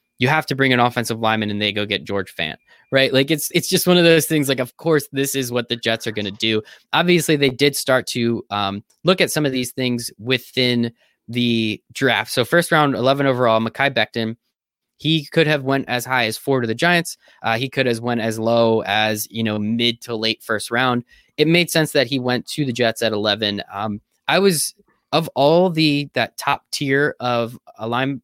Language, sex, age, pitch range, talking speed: English, male, 20-39, 110-150 Hz, 225 wpm